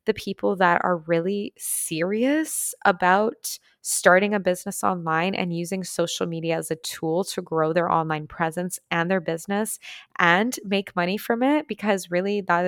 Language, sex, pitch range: English, female, 170-205 Hz